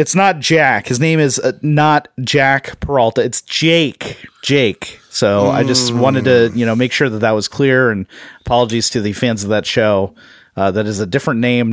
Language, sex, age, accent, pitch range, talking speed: English, male, 30-49, American, 110-140 Hz, 200 wpm